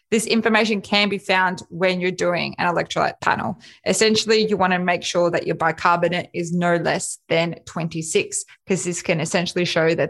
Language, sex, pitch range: English, female, 175-205 Hz